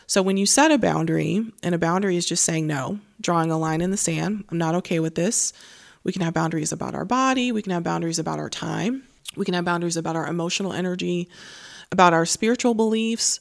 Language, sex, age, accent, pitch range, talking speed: English, female, 20-39, American, 170-210 Hz, 225 wpm